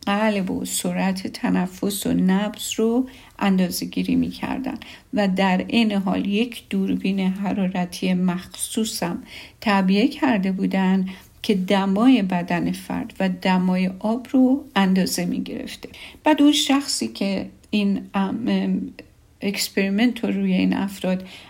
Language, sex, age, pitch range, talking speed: Persian, female, 50-69, 195-240 Hz, 115 wpm